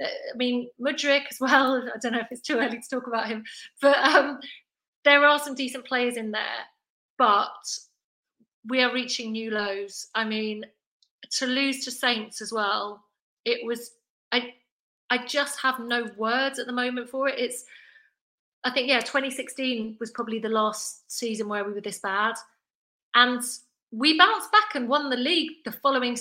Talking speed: 175 wpm